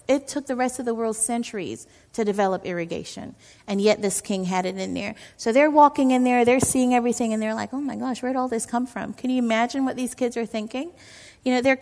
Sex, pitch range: female, 210-250 Hz